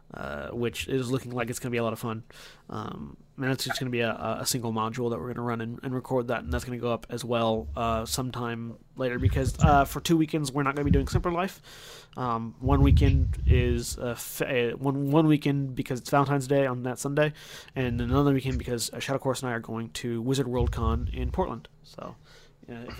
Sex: male